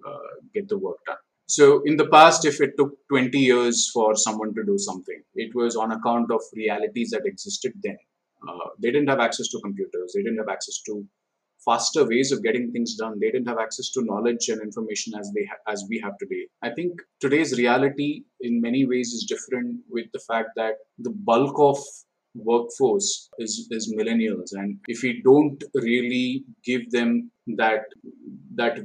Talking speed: 185 wpm